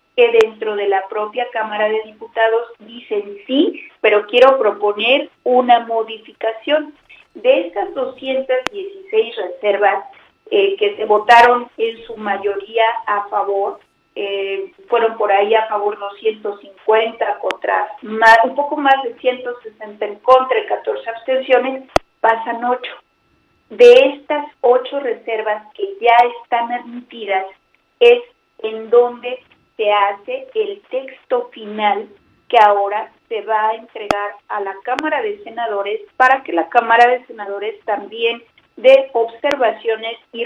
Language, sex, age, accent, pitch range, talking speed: Spanish, female, 40-59, Mexican, 215-275 Hz, 130 wpm